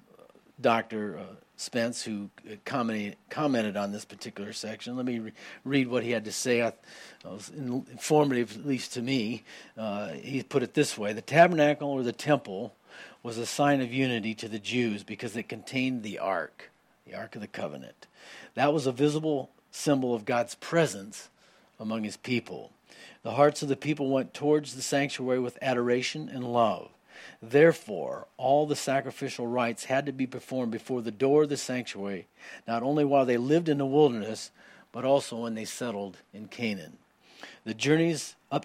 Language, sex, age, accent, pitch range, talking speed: English, male, 50-69, American, 115-140 Hz, 170 wpm